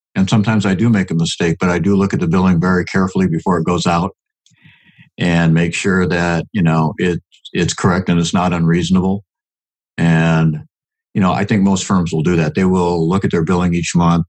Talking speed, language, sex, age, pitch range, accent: 215 wpm, English, male, 60-79, 85-110 Hz, American